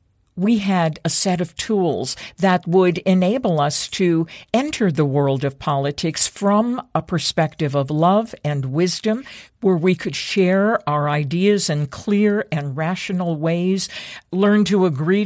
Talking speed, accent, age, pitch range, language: 145 wpm, American, 50-69, 150-190 Hz, English